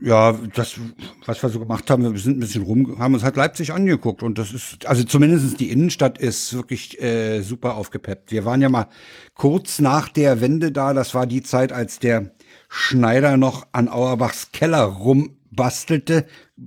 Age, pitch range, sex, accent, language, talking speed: 60-79, 125-155 Hz, male, German, German, 180 wpm